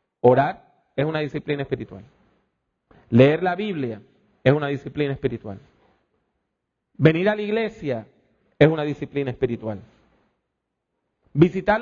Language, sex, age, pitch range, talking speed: English, male, 40-59, 145-230 Hz, 105 wpm